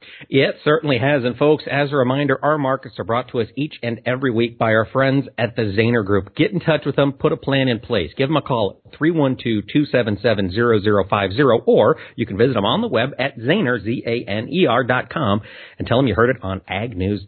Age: 50-69